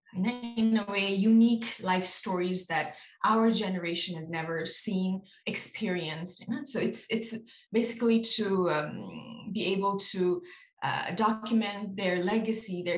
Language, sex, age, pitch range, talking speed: English, female, 20-39, 185-225 Hz, 125 wpm